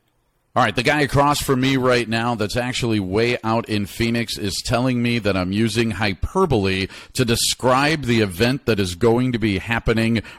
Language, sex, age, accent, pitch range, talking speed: English, male, 50-69, American, 115-155 Hz, 185 wpm